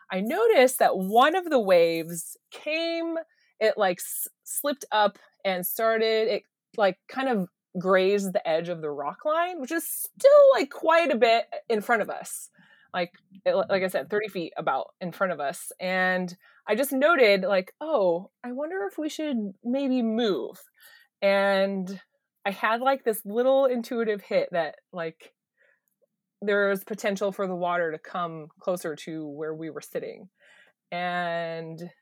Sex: female